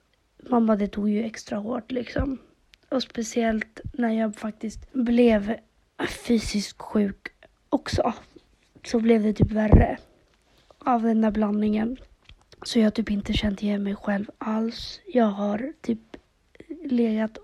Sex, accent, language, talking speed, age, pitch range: female, native, Swedish, 130 wpm, 30-49, 215-250 Hz